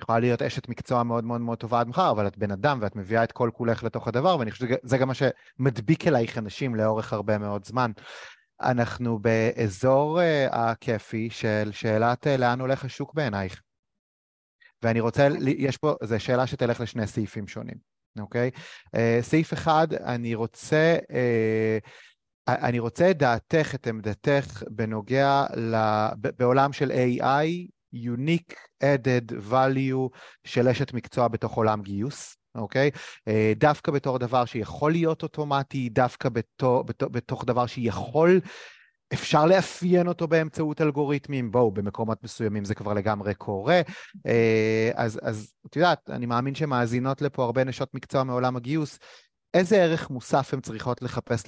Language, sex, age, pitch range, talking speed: Hebrew, male, 30-49, 115-140 Hz, 135 wpm